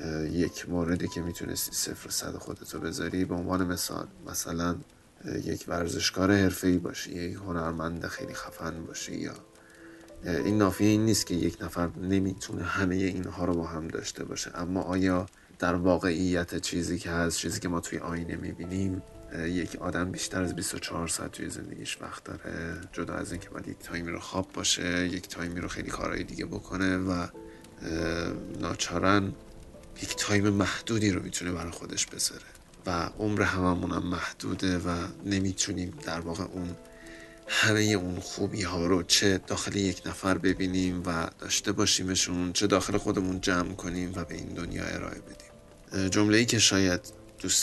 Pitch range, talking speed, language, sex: 85-100 Hz, 155 wpm, Persian, male